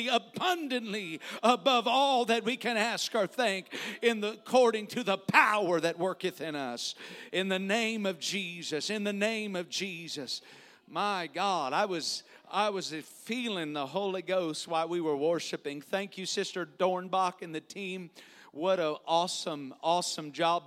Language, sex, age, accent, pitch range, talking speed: English, male, 50-69, American, 140-185 Hz, 160 wpm